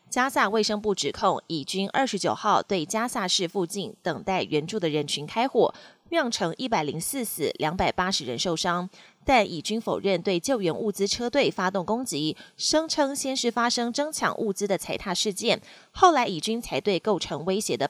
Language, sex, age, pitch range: Chinese, female, 30-49, 180-245 Hz